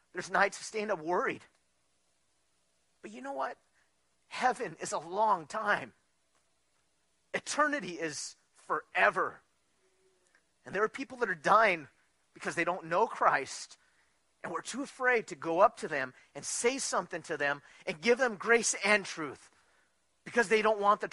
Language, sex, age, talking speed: English, male, 40-59, 155 wpm